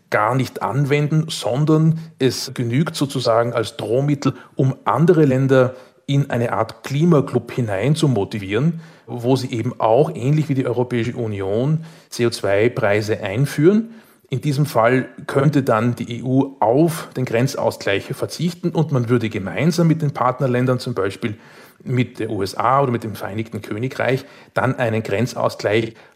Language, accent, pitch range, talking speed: German, Austrian, 115-140 Hz, 140 wpm